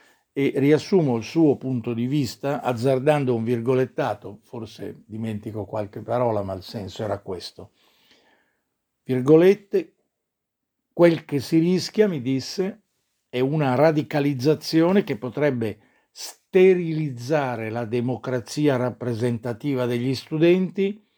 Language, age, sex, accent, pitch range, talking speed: Italian, 50-69, male, native, 115-150 Hz, 100 wpm